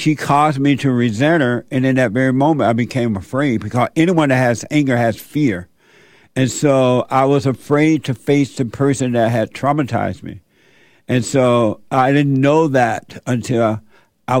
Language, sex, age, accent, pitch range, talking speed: English, male, 60-79, American, 120-145 Hz, 175 wpm